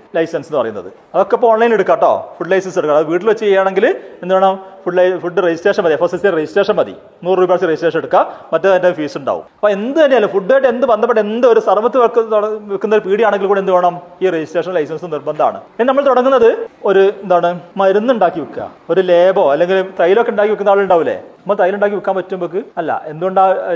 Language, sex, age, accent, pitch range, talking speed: Malayalam, male, 30-49, native, 170-215 Hz, 165 wpm